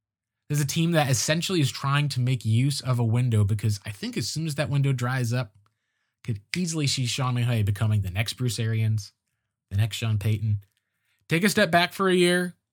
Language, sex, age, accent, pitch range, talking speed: English, male, 20-39, American, 110-145 Hz, 205 wpm